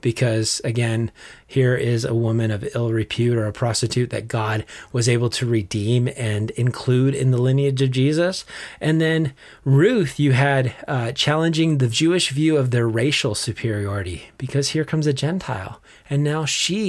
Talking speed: 165 wpm